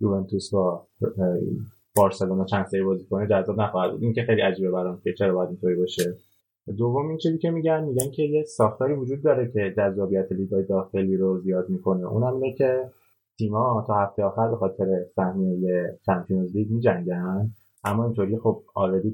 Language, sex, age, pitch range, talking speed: Persian, male, 20-39, 95-110 Hz, 170 wpm